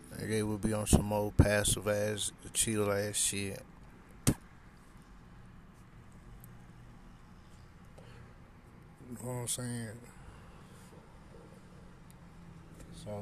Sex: male